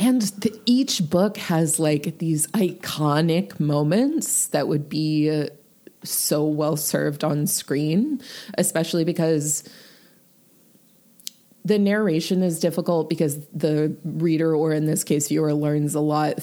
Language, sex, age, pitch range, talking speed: English, female, 20-39, 150-175 Hz, 120 wpm